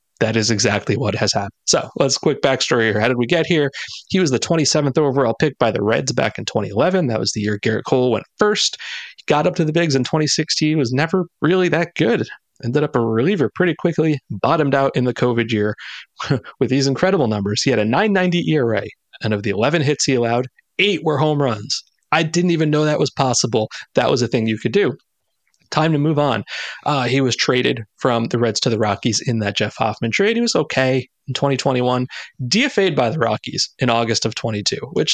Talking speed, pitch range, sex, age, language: 220 wpm, 120-170 Hz, male, 30-49, English